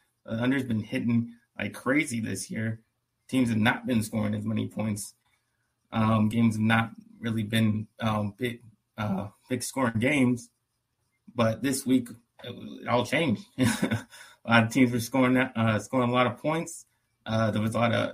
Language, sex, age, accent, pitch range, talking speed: English, male, 20-39, American, 110-125 Hz, 170 wpm